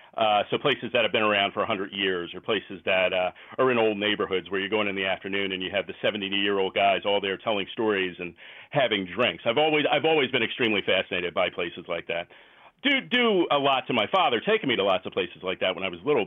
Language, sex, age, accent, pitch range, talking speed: English, male, 40-59, American, 95-115 Hz, 245 wpm